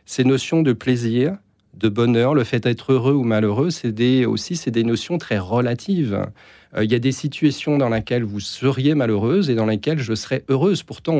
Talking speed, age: 205 wpm, 40-59